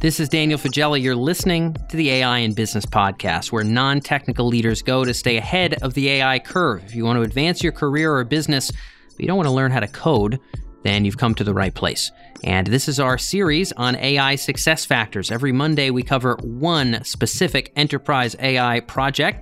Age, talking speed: 30-49, 205 wpm